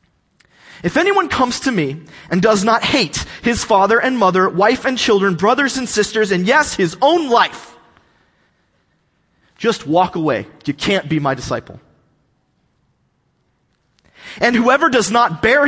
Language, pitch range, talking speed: English, 175-265 Hz, 140 wpm